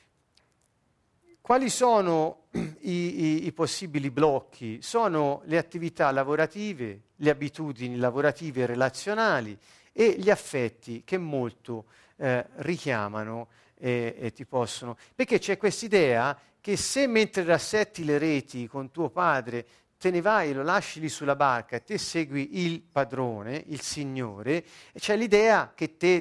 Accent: native